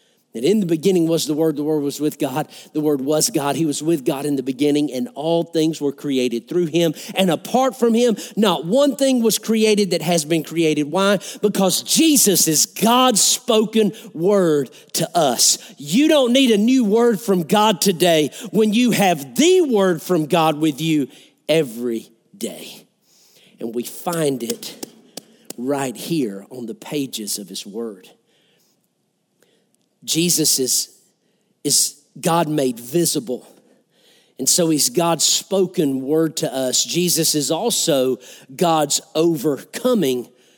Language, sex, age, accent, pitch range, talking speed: English, male, 50-69, American, 150-205 Hz, 150 wpm